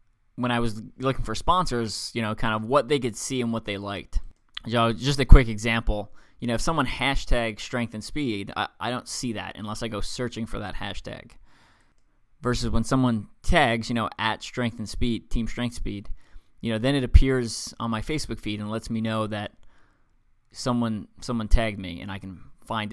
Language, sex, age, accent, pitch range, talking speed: English, male, 20-39, American, 105-120 Hz, 205 wpm